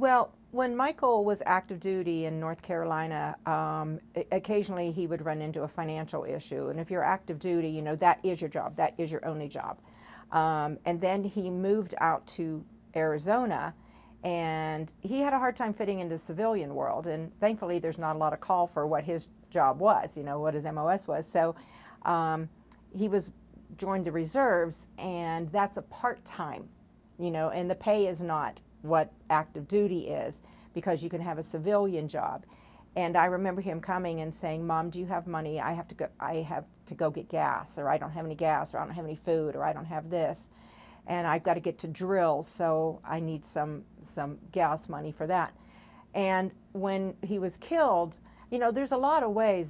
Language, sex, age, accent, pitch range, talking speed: English, female, 50-69, American, 155-190 Hz, 205 wpm